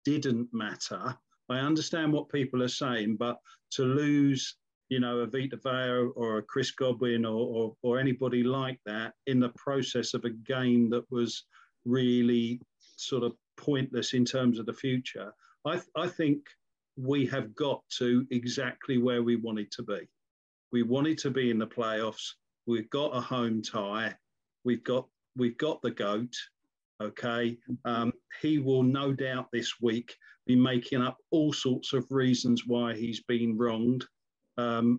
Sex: male